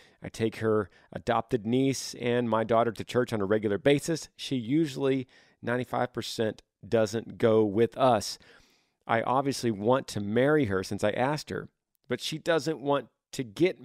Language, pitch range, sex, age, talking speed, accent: English, 110-135 Hz, male, 40-59, 160 wpm, American